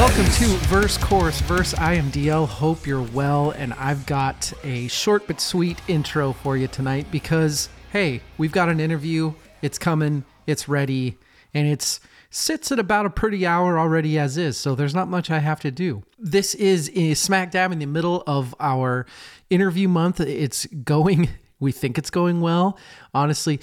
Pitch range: 130-165 Hz